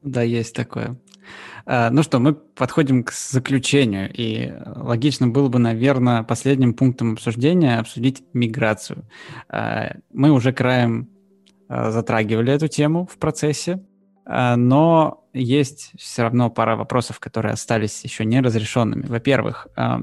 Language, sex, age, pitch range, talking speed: Russian, male, 20-39, 115-145 Hz, 115 wpm